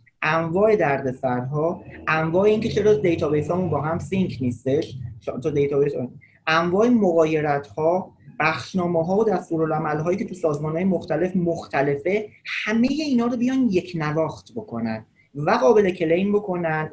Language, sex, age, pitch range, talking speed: Persian, male, 30-49, 140-190 Hz, 130 wpm